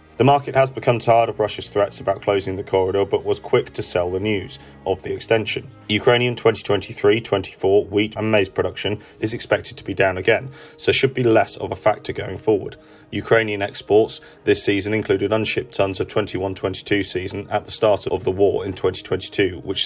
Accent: British